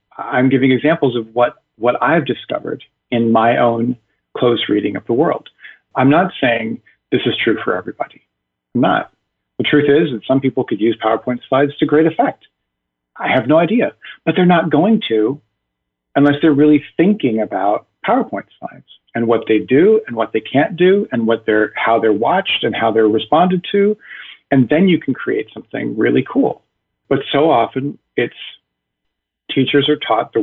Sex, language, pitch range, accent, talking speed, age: male, English, 115-155 Hz, American, 180 wpm, 40-59